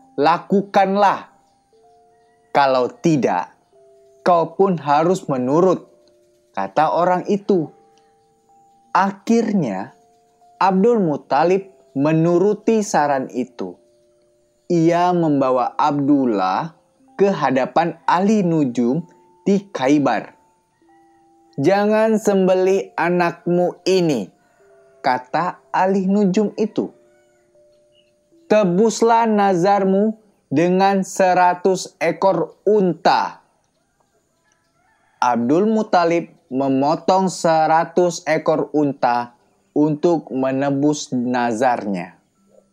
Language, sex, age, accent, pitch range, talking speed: Indonesian, male, 20-39, native, 130-190 Hz, 65 wpm